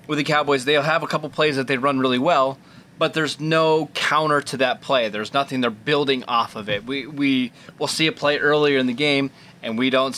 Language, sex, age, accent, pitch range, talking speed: English, male, 20-39, American, 125-150 Hz, 230 wpm